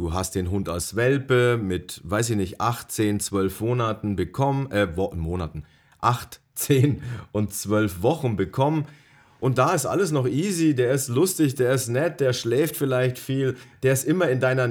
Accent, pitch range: German, 120-160 Hz